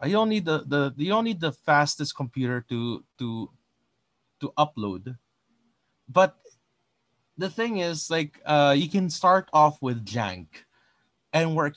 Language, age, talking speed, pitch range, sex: English, 20-39, 150 wpm, 115-160 Hz, male